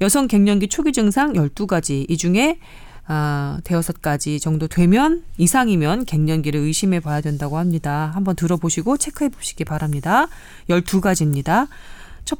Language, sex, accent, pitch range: Korean, female, native, 155-250 Hz